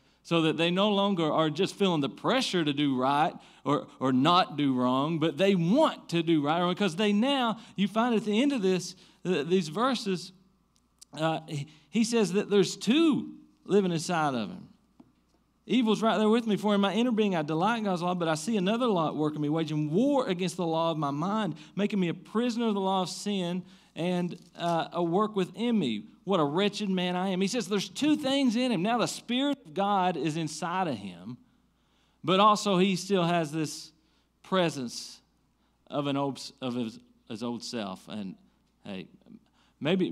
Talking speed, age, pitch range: 200 wpm, 40-59, 150-205 Hz